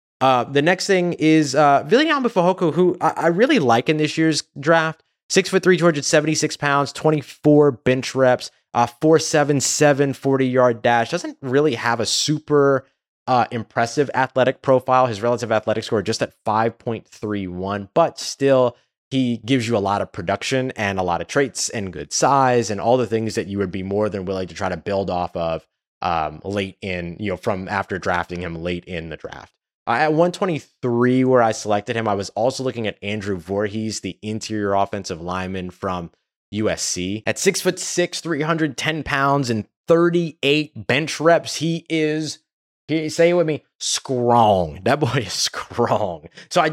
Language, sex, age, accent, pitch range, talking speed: English, male, 20-39, American, 105-150 Hz, 180 wpm